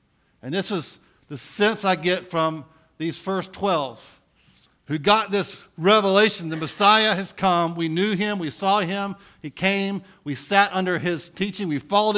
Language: English